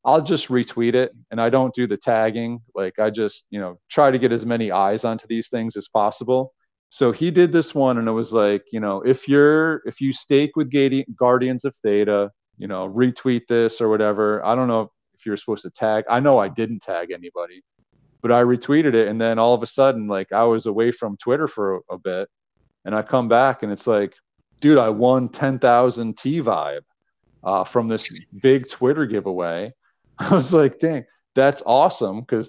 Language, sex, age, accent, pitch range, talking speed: English, male, 40-59, American, 110-135 Hz, 210 wpm